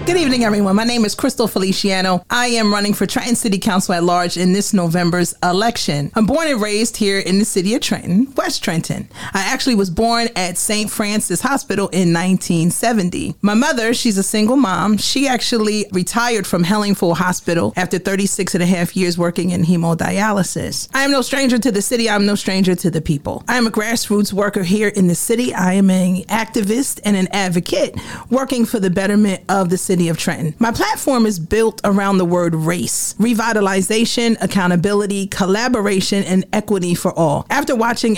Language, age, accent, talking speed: English, 40-59, American, 190 wpm